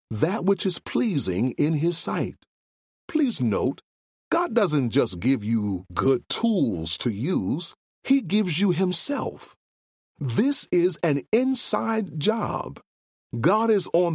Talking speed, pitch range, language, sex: 125 wpm, 135-210 Hz, English, male